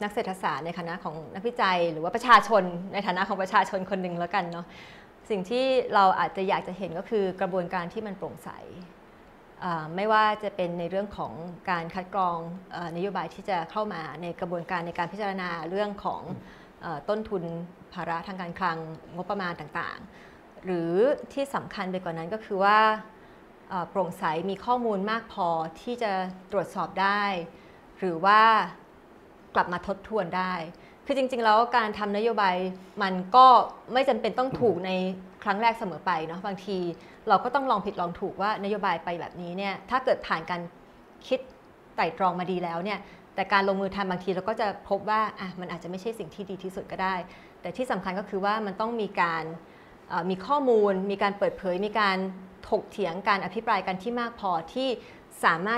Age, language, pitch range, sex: 20-39, Thai, 180-215 Hz, female